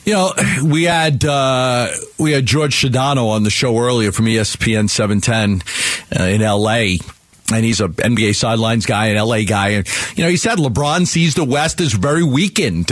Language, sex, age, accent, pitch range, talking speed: English, male, 50-69, American, 125-170 Hz, 190 wpm